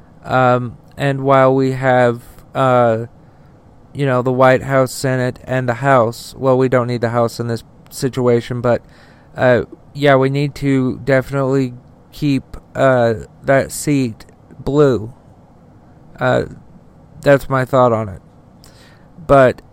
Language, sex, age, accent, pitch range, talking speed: English, male, 40-59, American, 125-145 Hz, 130 wpm